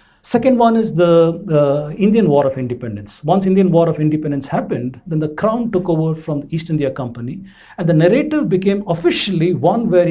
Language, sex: English, male